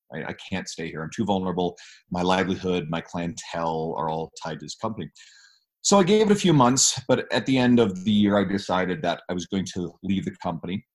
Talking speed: 225 wpm